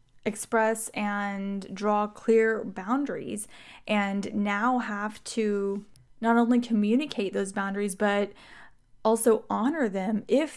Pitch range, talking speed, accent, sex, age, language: 210-265 Hz, 110 wpm, American, female, 10-29, English